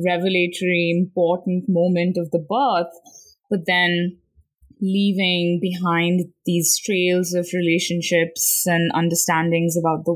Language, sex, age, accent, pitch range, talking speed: English, female, 20-39, Indian, 170-205 Hz, 105 wpm